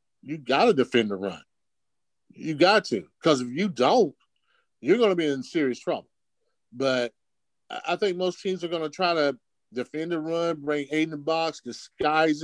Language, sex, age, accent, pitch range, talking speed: English, male, 50-69, American, 120-155 Hz, 175 wpm